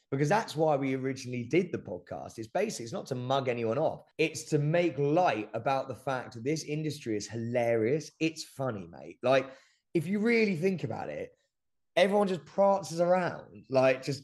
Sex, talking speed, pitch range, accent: male, 180 wpm, 120-155 Hz, British